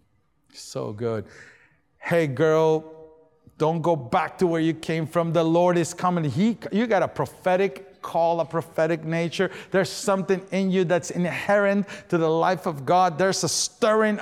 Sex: male